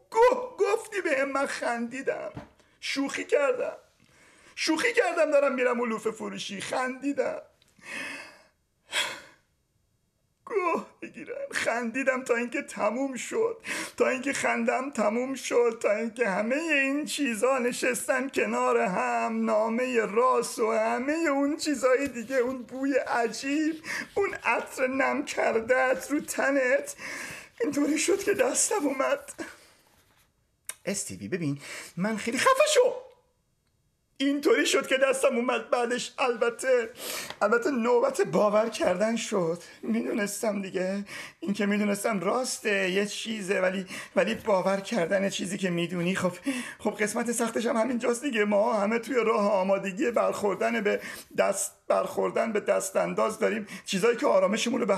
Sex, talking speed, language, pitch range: male, 120 wpm, Persian, 215-285 Hz